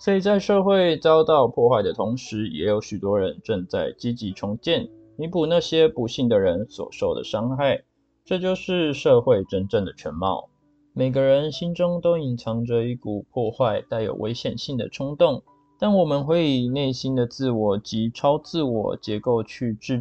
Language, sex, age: Chinese, male, 20-39